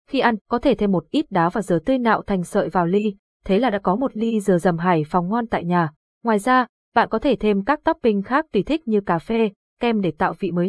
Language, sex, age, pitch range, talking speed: Vietnamese, female, 20-39, 185-230 Hz, 270 wpm